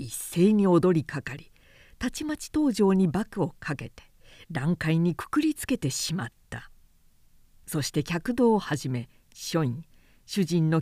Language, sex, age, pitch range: Japanese, female, 50-69, 140-215 Hz